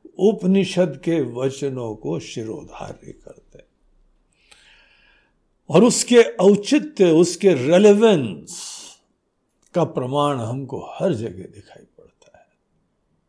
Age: 60-79